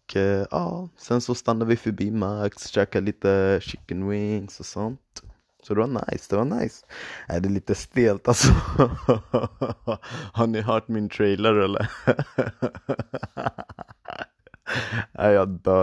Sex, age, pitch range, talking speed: male, 20-39, 85-100 Hz, 135 wpm